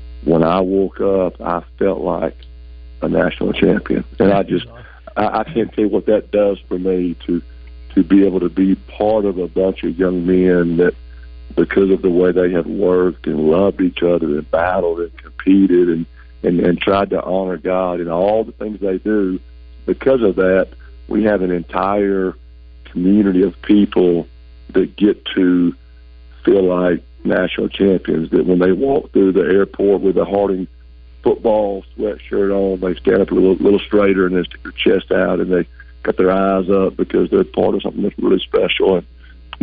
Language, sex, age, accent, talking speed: English, male, 50-69, American, 185 wpm